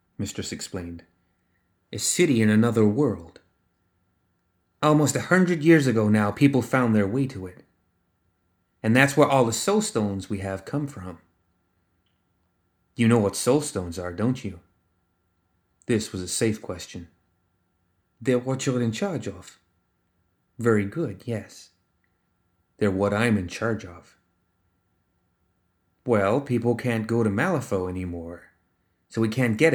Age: 30-49